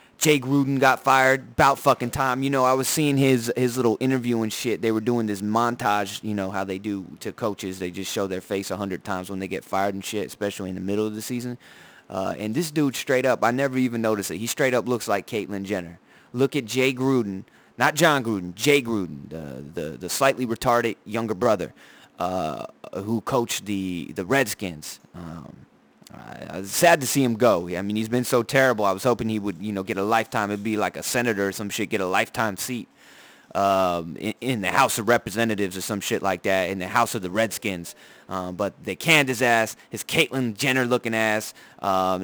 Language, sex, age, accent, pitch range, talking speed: English, male, 30-49, American, 100-125 Hz, 225 wpm